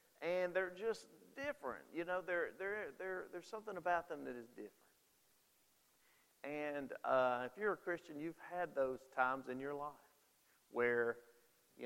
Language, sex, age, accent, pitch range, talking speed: English, male, 40-59, American, 125-175 Hz, 155 wpm